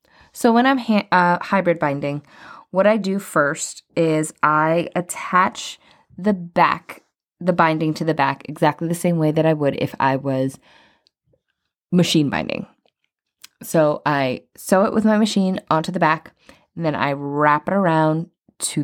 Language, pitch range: English, 155-195 Hz